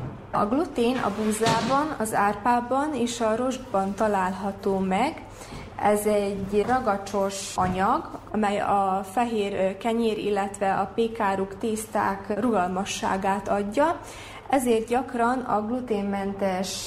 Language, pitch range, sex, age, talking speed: Hungarian, 200-240 Hz, female, 20-39, 105 wpm